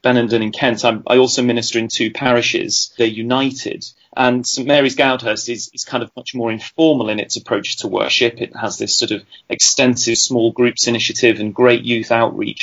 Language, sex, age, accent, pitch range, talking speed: English, male, 30-49, British, 120-145 Hz, 195 wpm